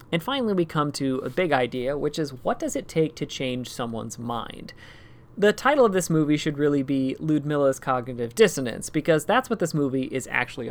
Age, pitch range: 30-49, 130-170 Hz